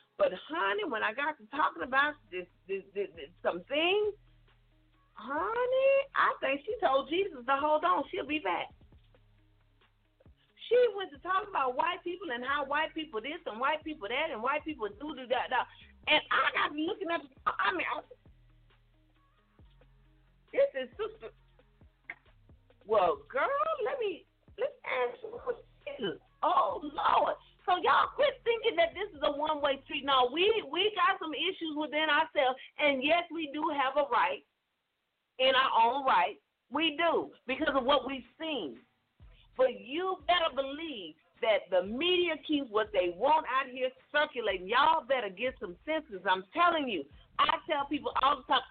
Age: 40-59